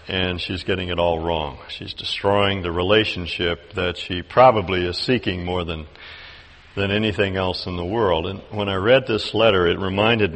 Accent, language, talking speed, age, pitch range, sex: American, English, 180 wpm, 60-79, 85-110 Hz, male